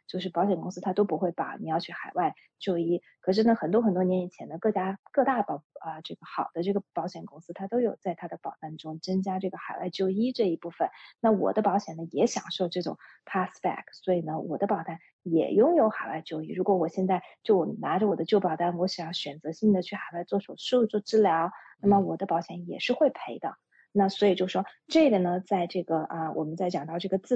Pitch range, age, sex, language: 175-220 Hz, 20-39, female, Chinese